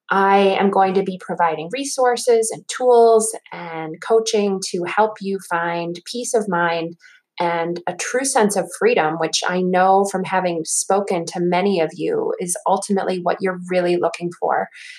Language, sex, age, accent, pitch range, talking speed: English, female, 20-39, American, 180-225 Hz, 165 wpm